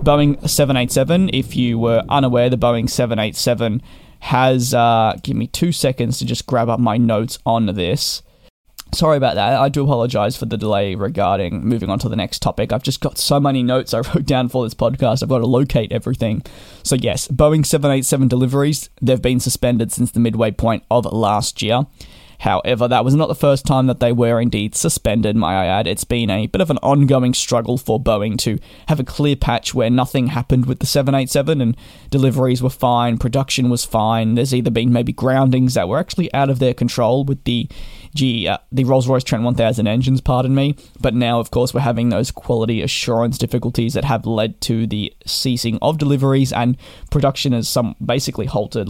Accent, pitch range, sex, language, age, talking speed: Australian, 115-135 Hz, male, English, 20-39, 195 wpm